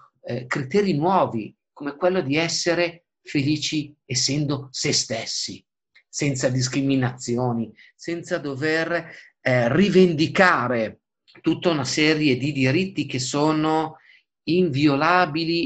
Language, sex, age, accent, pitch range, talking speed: Italian, male, 50-69, native, 125-160 Hz, 90 wpm